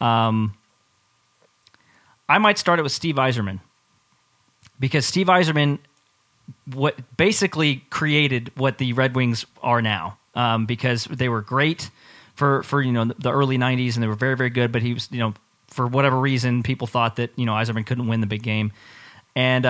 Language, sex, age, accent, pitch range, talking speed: English, male, 30-49, American, 110-135 Hz, 175 wpm